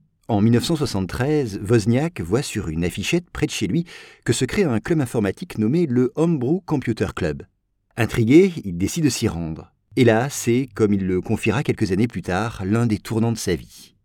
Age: 50-69